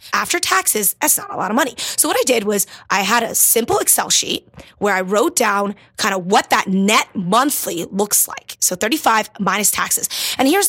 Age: 20-39